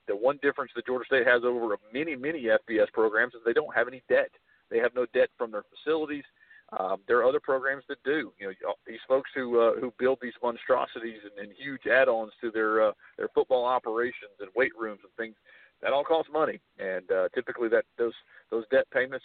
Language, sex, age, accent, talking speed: English, male, 50-69, American, 215 wpm